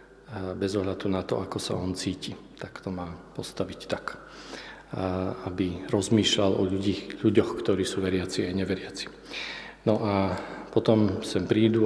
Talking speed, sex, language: 140 wpm, male, Slovak